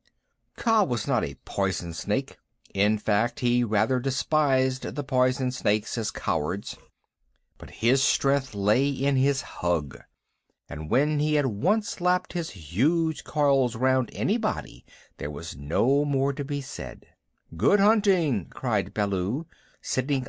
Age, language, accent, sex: 60-79, English, American, male